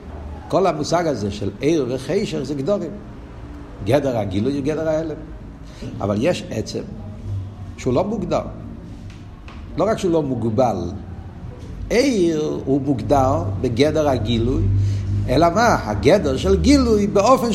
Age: 60-79